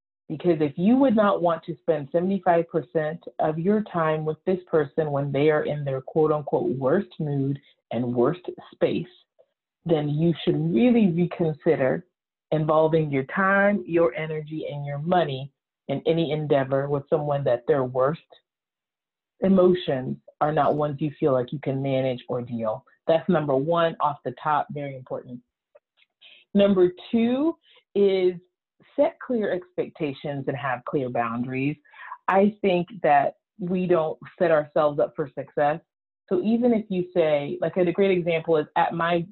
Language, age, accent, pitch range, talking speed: English, 40-59, American, 140-180 Hz, 150 wpm